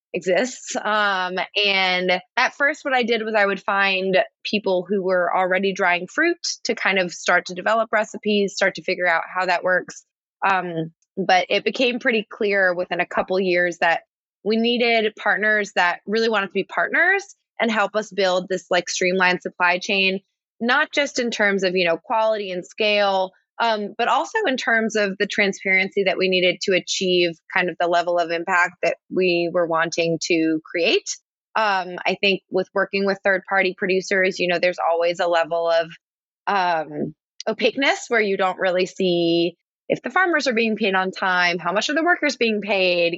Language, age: English, 20-39